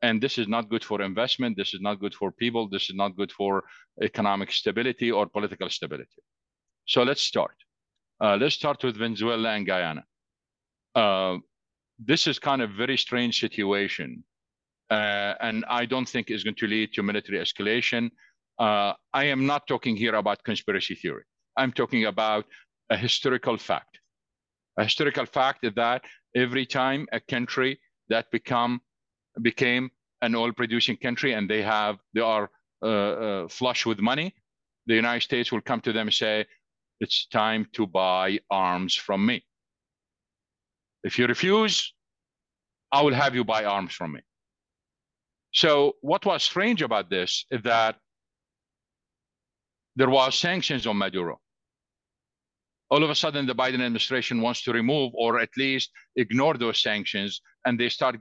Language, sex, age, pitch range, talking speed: English, male, 50-69, 105-125 Hz, 160 wpm